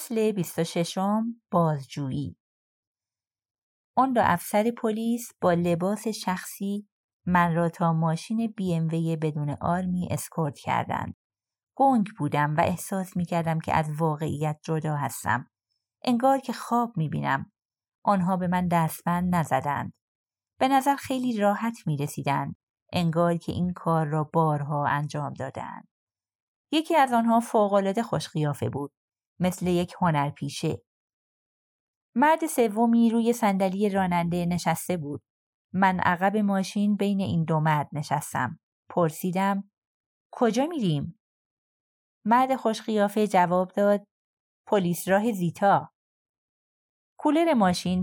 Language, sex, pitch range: Persian, female, 155-210 Hz